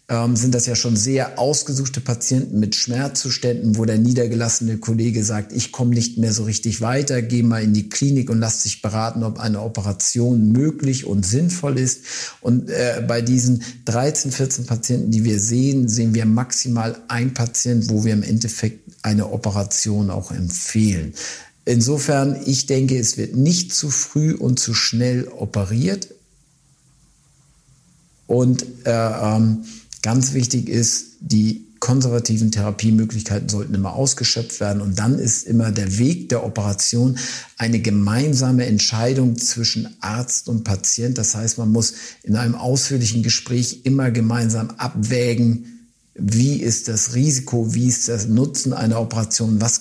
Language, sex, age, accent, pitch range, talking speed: German, male, 50-69, German, 110-130 Hz, 145 wpm